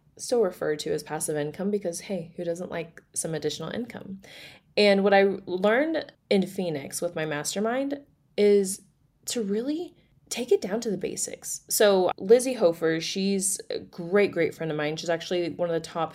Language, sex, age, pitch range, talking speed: English, female, 20-39, 160-215 Hz, 180 wpm